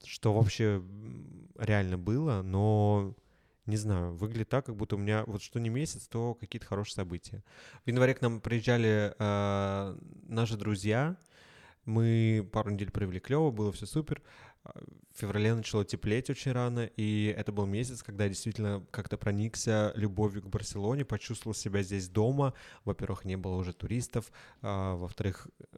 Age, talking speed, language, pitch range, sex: 20-39, 150 wpm, Russian, 105-120 Hz, male